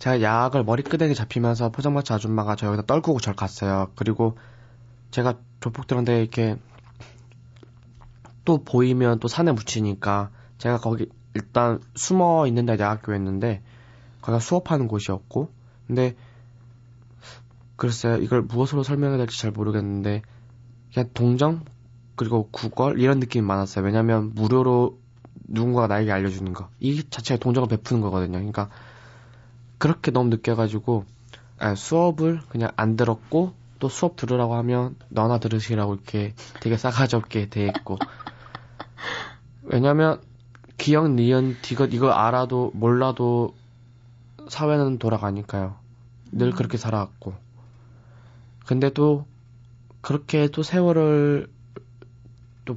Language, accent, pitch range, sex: Korean, native, 115-125 Hz, male